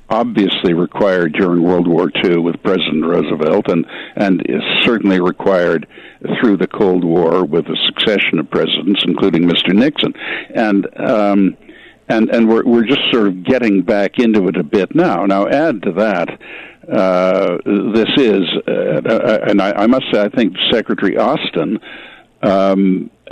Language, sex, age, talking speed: English, male, 60-79, 155 wpm